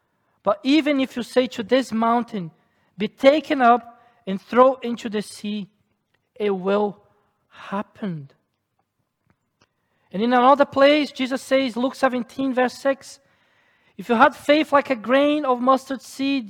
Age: 40-59